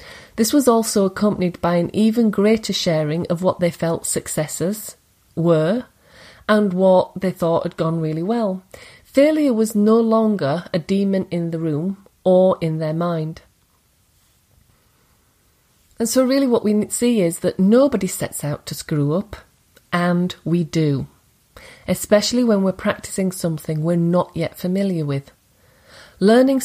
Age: 30-49